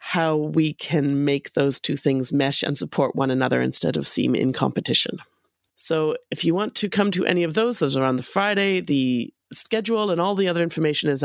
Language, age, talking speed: English, 30-49, 215 wpm